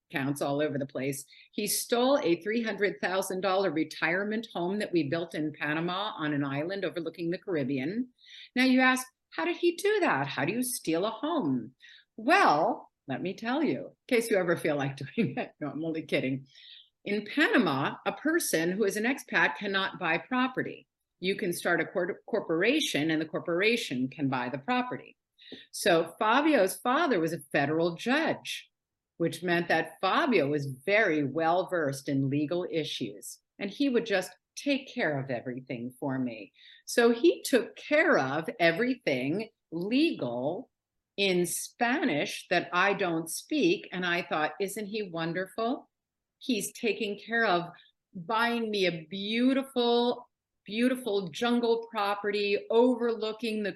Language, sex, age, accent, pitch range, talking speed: English, female, 50-69, American, 165-235 Hz, 155 wpm